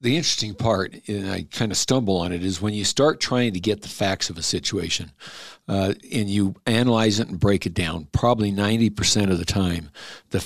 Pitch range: 100-115 Hz